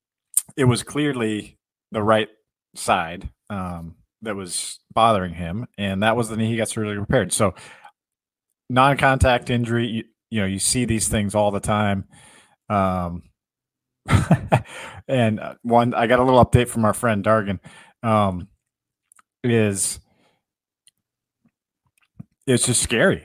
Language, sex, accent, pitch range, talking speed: English, male, American, 105-125 Hz, 130 wpm